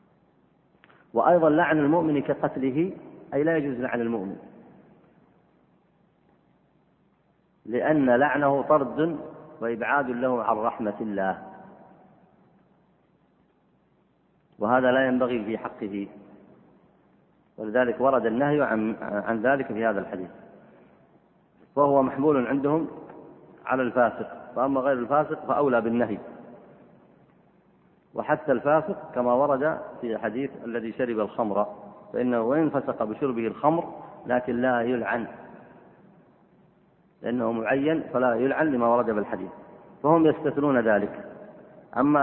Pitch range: 110-140 Hz